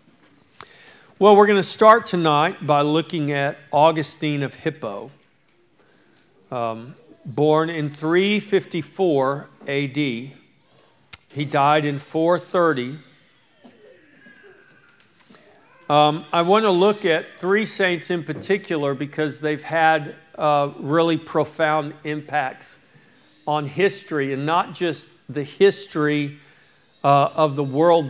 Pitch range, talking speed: 145-180 Hz, 105 wpm